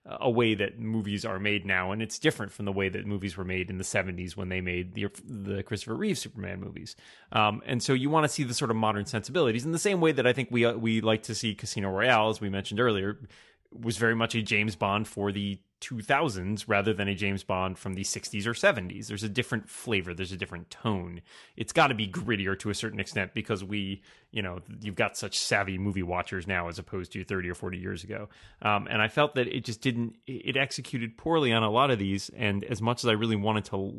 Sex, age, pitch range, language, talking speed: male, 30-49, 100-125 Hz, English, 245 wpm